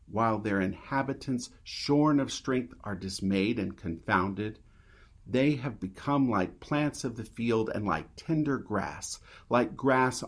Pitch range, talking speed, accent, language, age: 95-125 Hz, 140 wpm, American, English, 50-69